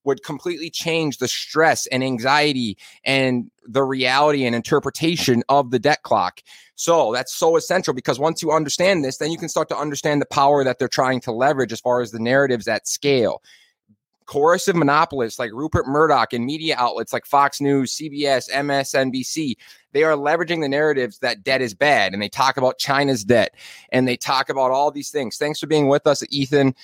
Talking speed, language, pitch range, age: 190 wpm, English, 125-145 Hz, 20-39